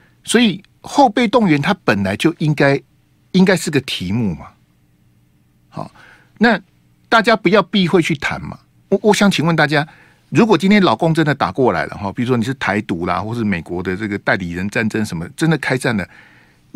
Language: Chinese